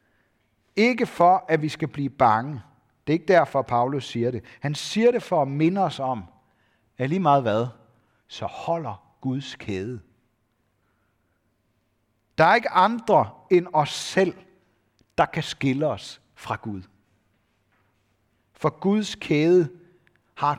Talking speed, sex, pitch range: 135 wpm, male, 110-175 Hz